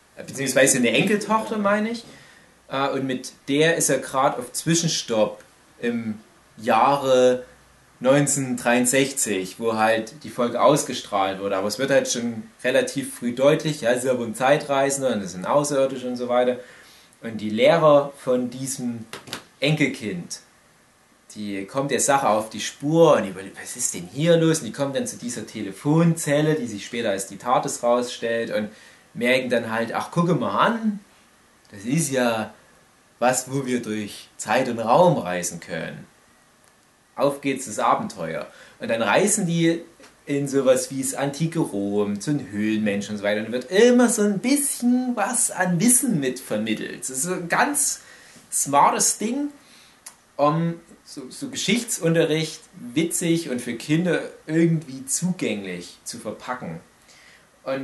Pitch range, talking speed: 120-170 Hz, 155 wpm